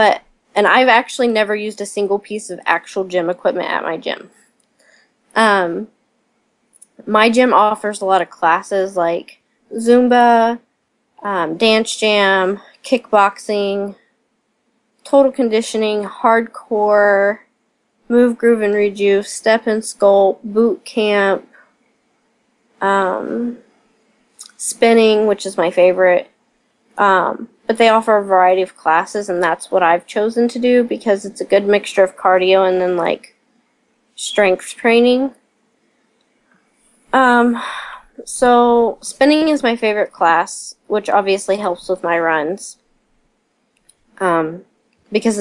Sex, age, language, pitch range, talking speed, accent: female, 20-39, English, 190-235 Hz, 120 wpm, American